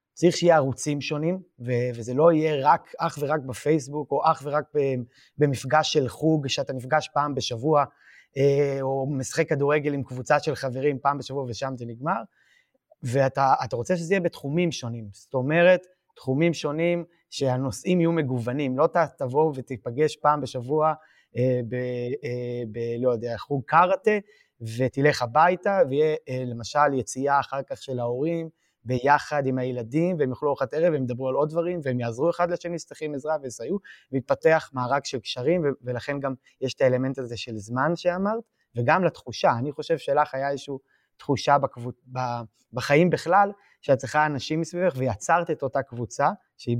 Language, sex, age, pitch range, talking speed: Hebrew, male, 20-39, 130-160 Hz, 160 wpm